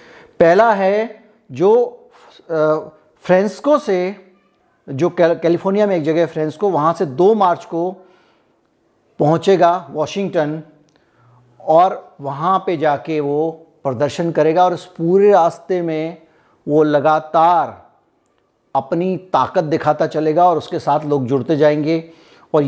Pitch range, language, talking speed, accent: 150-190 Hz, Hindi, 115 wpm, native